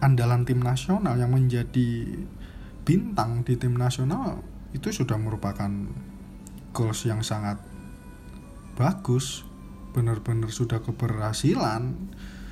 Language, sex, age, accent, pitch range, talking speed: Indonesian, male, 20-39, native, 105-140 Hz, 90 wpm